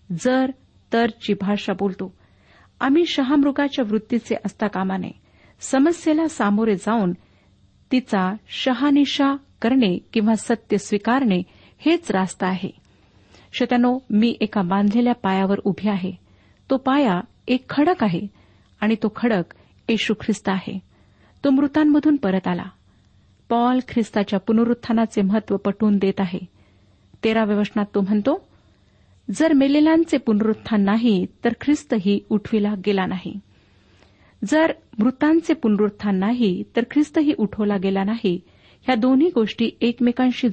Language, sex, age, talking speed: Marathi, female, 50-69, 110 wpm